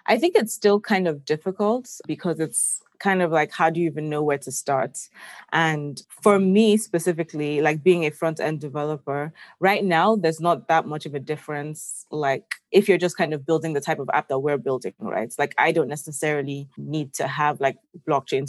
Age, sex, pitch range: 20-39, female, 140-160 Hz